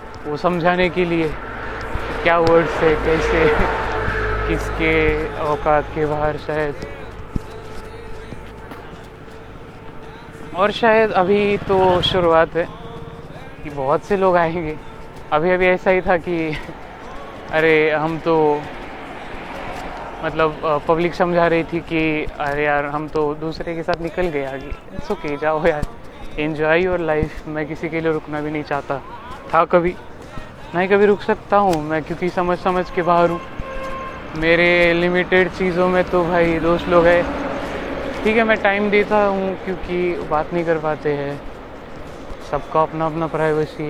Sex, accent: male, native